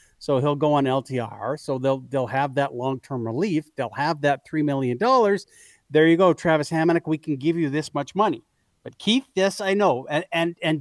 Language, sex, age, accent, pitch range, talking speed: English, male, 50-69, American, 150-200 Hz, 205 wpm